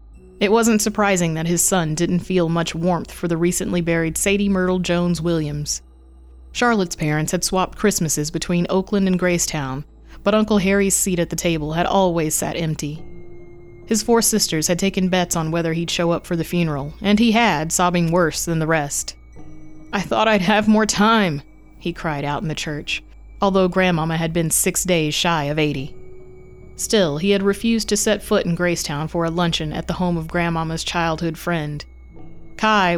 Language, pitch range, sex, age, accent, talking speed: English, 155-195 Hz, female, 30-49, American, 185 wpm